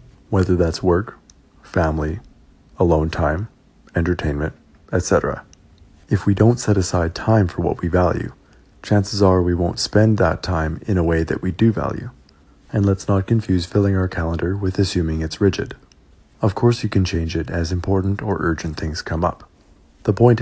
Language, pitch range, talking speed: English, 85-100 Hz, 170 wpm